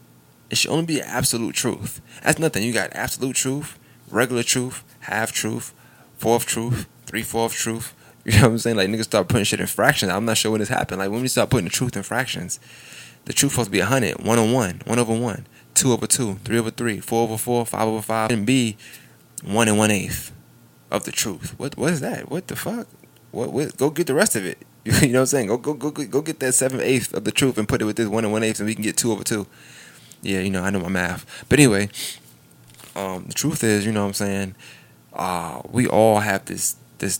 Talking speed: 245 wpm